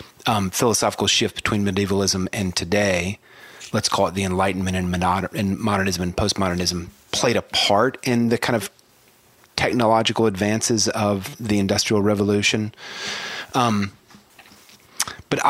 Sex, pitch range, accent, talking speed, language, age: male, 90-110 Hz, American, 125 wpm, English, 30-49